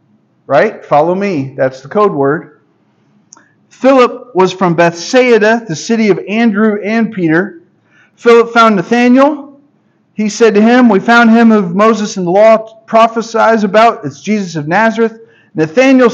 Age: 50-69